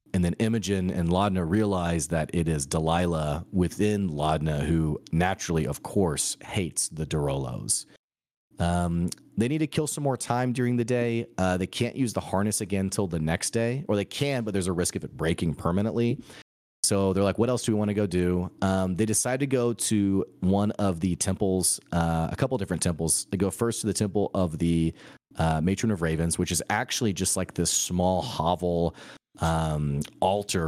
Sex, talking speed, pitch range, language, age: male, 200 wpm, 85-110 Hz, English, 30-49